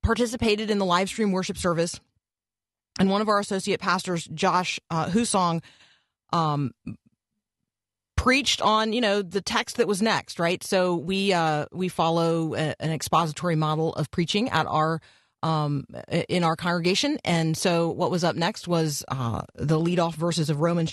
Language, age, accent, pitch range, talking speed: English, 30-49, American, 160-210 Hz, 165 wpm